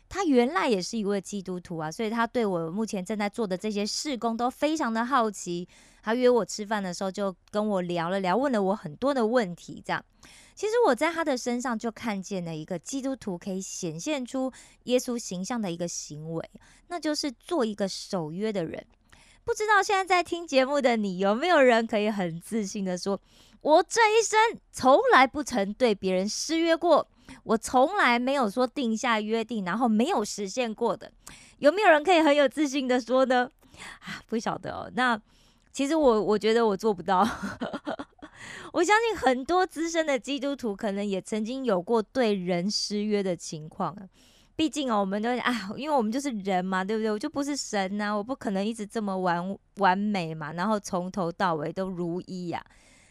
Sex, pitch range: female, 195-270 Hz